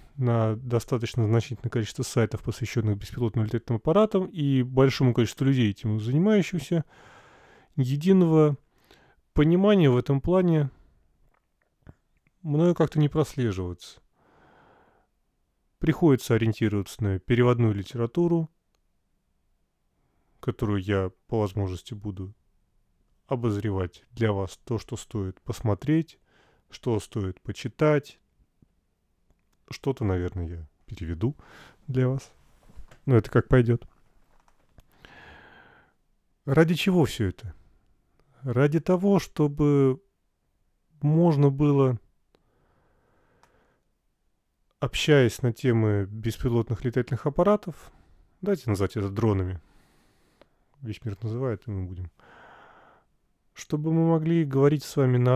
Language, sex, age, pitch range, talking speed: Russian, male, 30-49, 105-145 Hz, 95 wpm